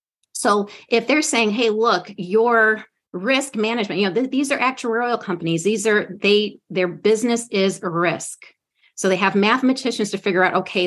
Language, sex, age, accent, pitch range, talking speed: English, female, 30-49, American, 180-225 Hz, 170 wpm